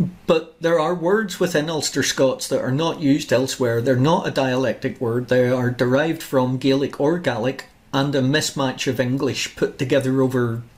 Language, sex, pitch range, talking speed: English, male, 130-155 Hz, 180 wpm